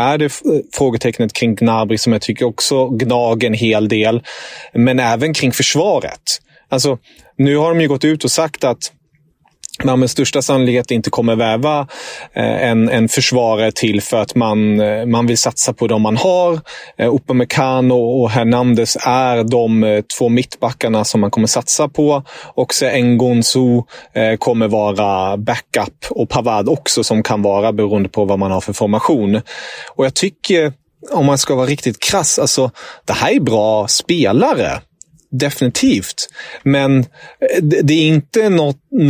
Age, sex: 30-49, male